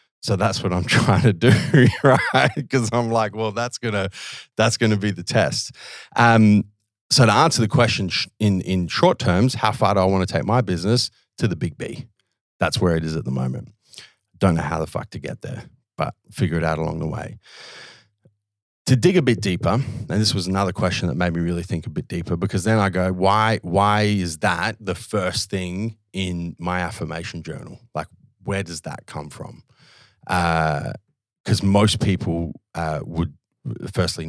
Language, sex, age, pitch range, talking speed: English, male, 30-49, 90-115 Hz, 195 wpm